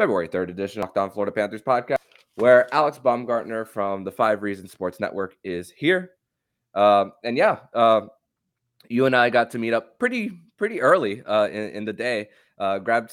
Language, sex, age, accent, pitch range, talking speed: English, male, 20-39, American, 95-125 Hz, 185 wpm